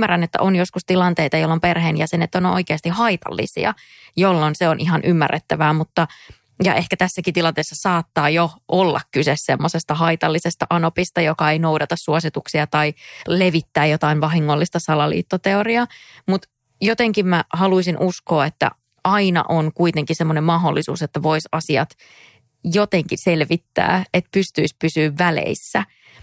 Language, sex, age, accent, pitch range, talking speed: English, female, 20-39, Finnish, 155-185 Hz, 130 wpm